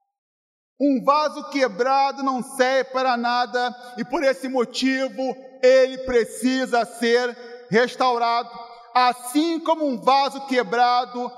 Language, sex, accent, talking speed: Portuguese, male, Brazilian, 105 wpm